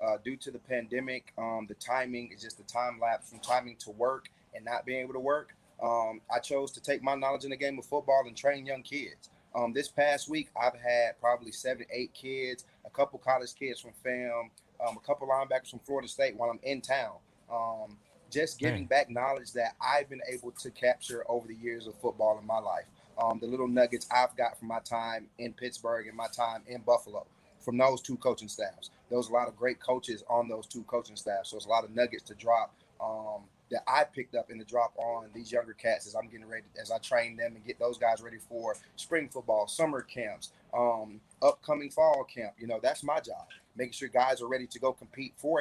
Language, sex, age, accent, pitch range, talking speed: English, male, 30-49, American, 115-135 Hz, 225 wpm